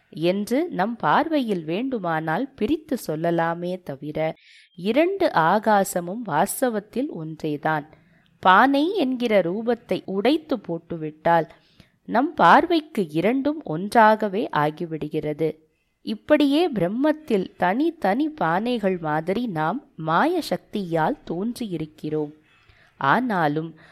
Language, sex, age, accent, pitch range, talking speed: Tamil, female, 20-39, native, 160-250 Hz, 80 wpm